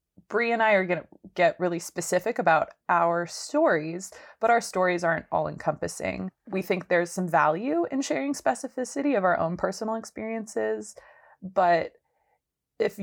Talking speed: 150 wpm